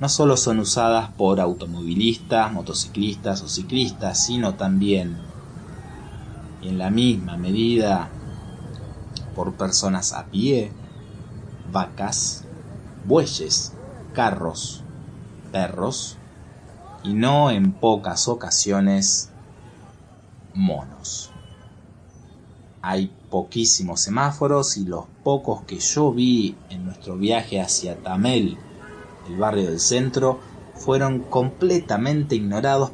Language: Spanish